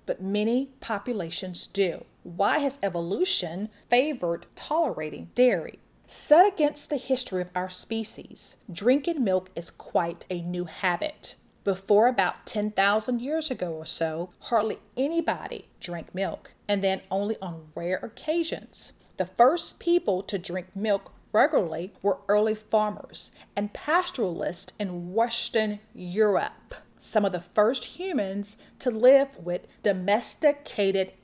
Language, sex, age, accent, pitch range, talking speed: English, female, 40-59, American, 185-255 Hz, 125 wpm